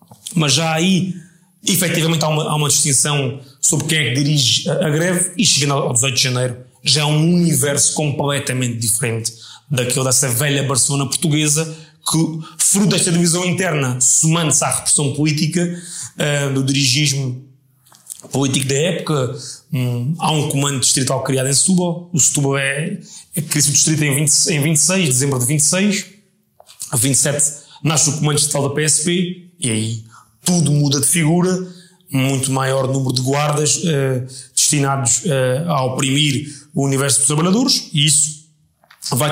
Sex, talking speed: male, 150 wpm